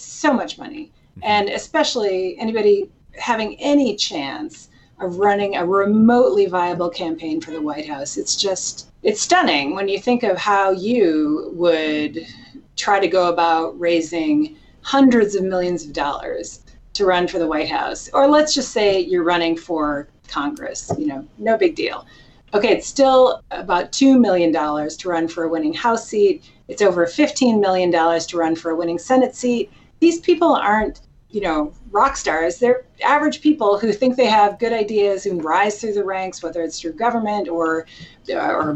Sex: female